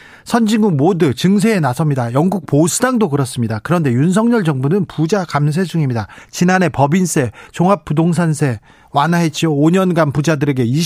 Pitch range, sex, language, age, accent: 135-190 Hz, male, Korean, 40-59, native